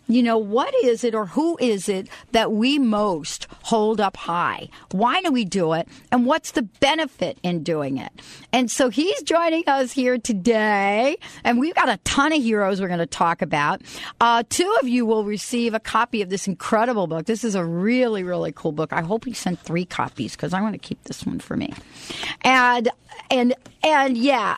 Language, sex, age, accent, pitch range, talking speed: English, female, 50-69, American, 185-255 Hz, 205 wpm